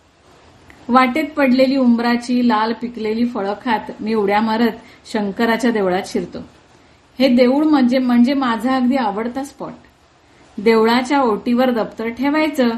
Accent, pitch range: native, 220-290 Hz